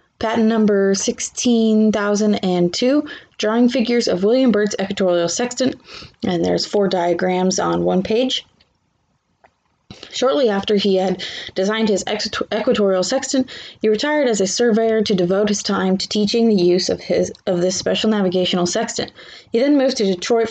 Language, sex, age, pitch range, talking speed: English, female, 20-39, 185-225 Hz, 145 wpm